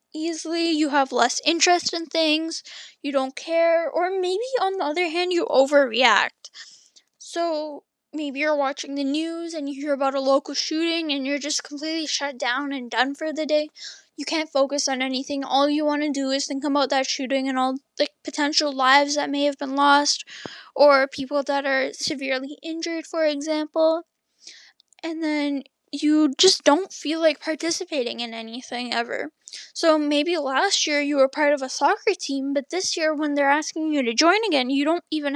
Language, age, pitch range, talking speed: English, 10-29, 270-315 Hz, 185 wpm